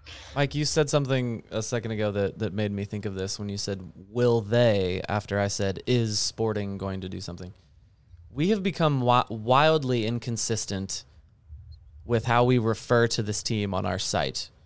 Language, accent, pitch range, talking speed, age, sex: English, American, 100-135 Hz, 175 wpm, 20-39, male